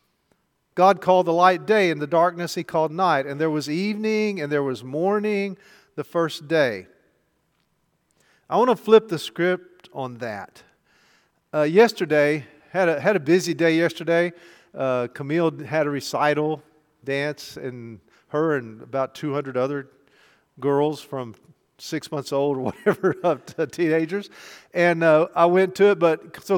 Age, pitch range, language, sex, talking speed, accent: 50-69, 150-200 Hz, English, male, 155 wpm, American